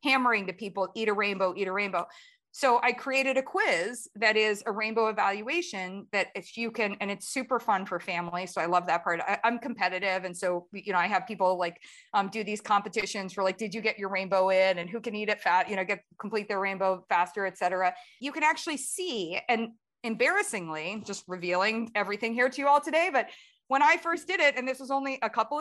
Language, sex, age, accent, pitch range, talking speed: English, female, 30-49, American, 195-280 Hz, 225 wpm